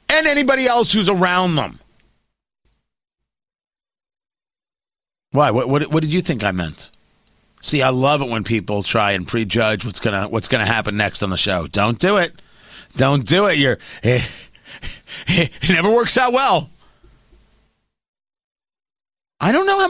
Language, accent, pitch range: English, American, 130-195 Hz